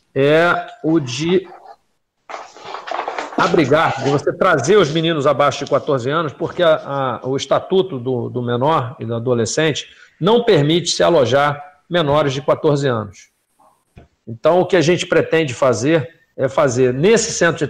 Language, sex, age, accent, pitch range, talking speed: Portuguese, male, 50-69, Brazilian, 130-165 Hz, 140 wpm